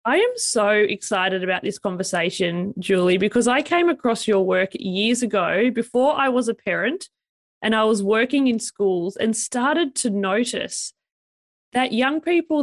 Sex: female